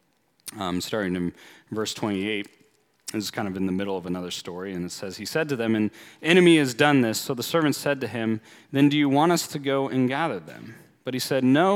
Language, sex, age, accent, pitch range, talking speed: English, male, 30-49, American, 115-150 Hz, 240 wpm